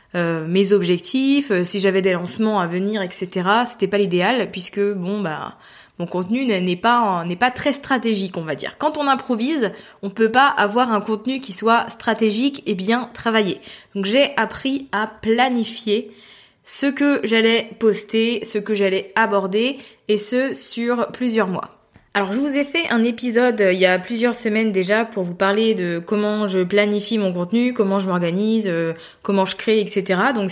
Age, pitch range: 20-39, 195-235 Hz